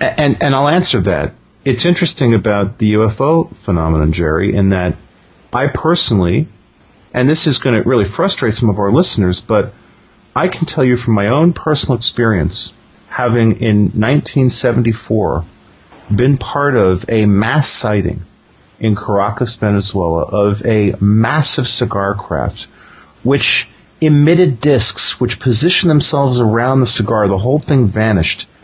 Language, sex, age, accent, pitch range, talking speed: English, male, 40-59, American, 105-145 Hz, 140 wpm